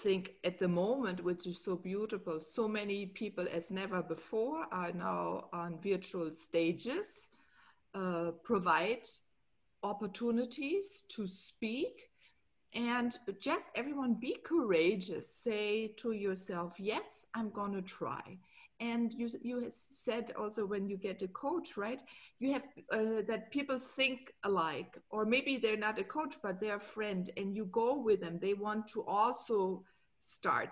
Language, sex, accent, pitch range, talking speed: English, female, German, 190-240 Hz, 145 wpm